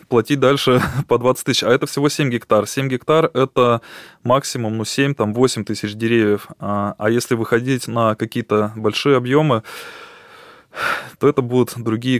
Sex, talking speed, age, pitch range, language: male, 150 wpm, 20-39, 110-145 Hz, Russian